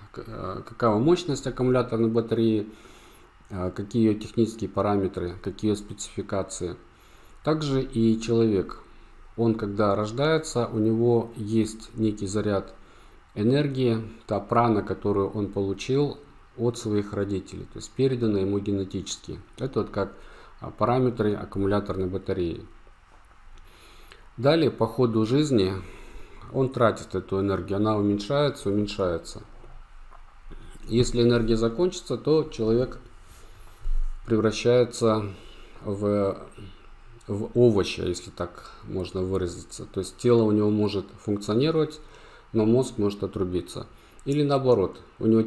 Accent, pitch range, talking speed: native, 95-120 Hz, 105 wpm